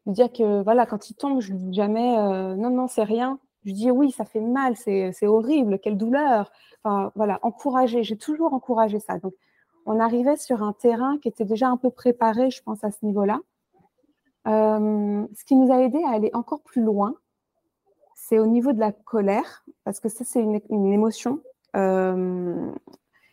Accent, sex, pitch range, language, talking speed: French, female, 210-255 Hz, French, 195 wpm